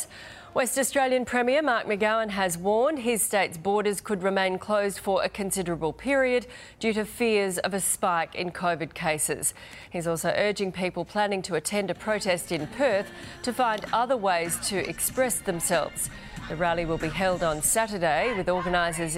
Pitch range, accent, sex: 170-220 Hz, Australian, female